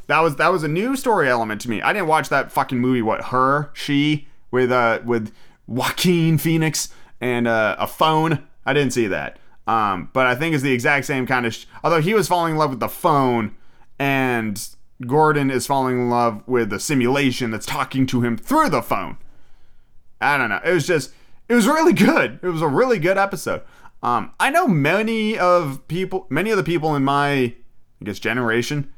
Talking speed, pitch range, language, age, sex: 205 wpm, 115-160 Hz, English, 30-49, male